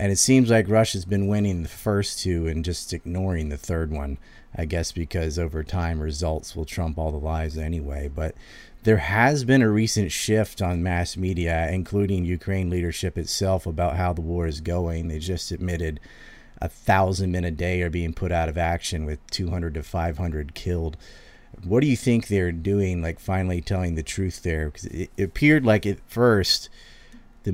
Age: 30-49